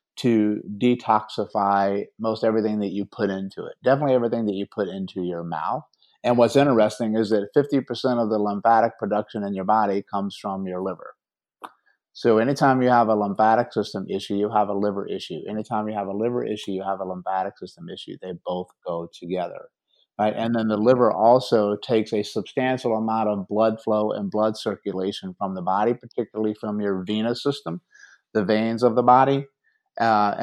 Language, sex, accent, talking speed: English, male, American, 185 wpm